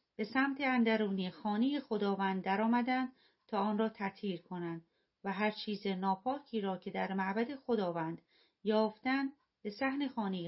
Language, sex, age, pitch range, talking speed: Persian, female, 40-59, 195-235 Hz, 135 wpm